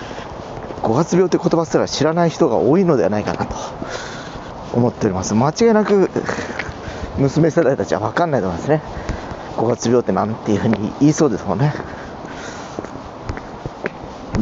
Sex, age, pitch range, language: male, 40-59, 115-160 Hz, Japanese